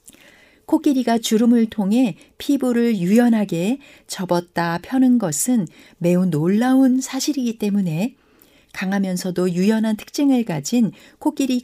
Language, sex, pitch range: Korean, female, 180-245 Hz